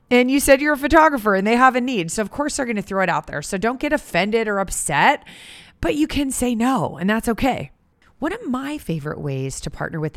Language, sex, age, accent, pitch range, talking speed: English, female, 30-49, American, 175-240 Hz, 255 wpm